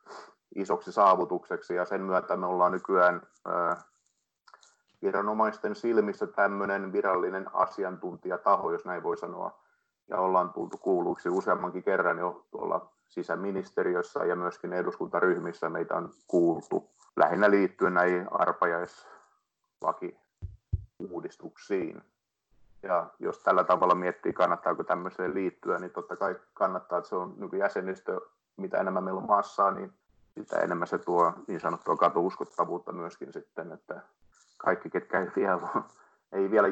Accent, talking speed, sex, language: native, 120 wpm, male, Finnish